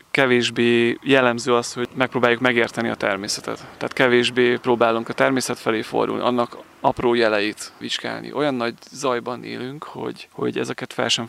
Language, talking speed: Hungarian, 150 wpm